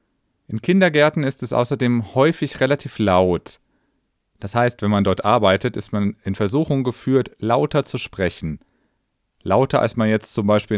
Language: German